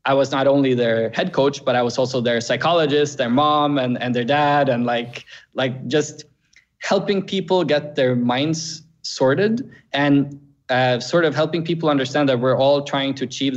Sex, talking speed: male, 185 wpm